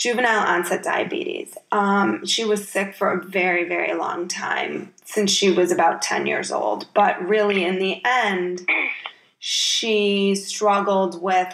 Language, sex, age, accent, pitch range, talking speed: English, female, 20-39, American, 185-210 Hz, 145 wpm